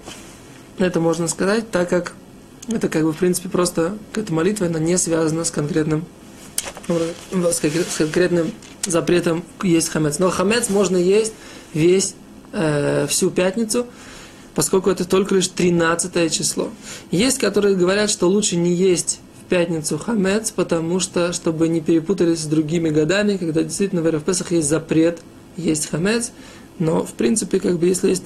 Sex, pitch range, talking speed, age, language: male, 165-200 Hz, 155 wpm, 20-39, Russian